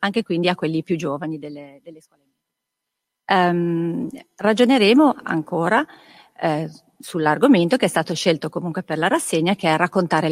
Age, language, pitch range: 40-59, Italian, 155-195 Hz